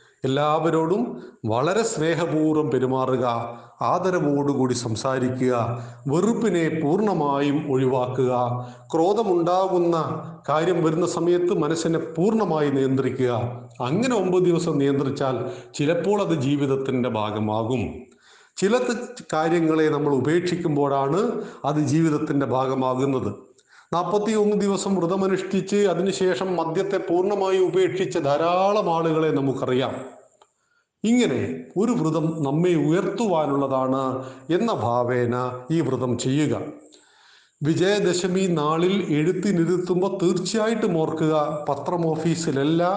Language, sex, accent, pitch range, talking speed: Malayalam, male, native, 130-180 Hz, 80 wpm